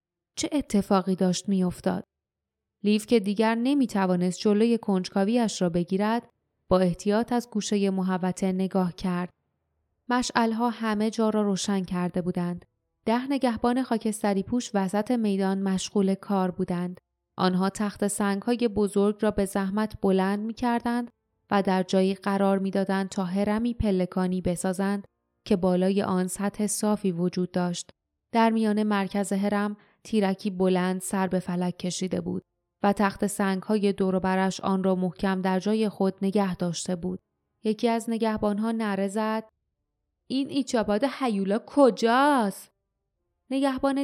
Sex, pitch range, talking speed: female, 185-220 Hz, 135 wpm